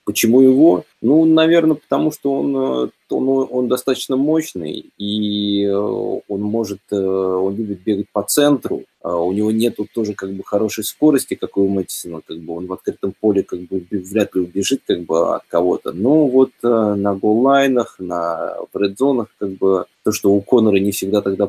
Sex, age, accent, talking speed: male, 20-39, native, 170 wpm